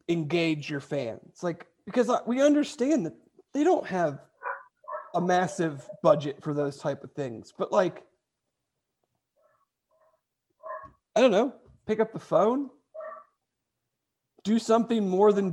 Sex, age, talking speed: male, 40-59, 125 wpm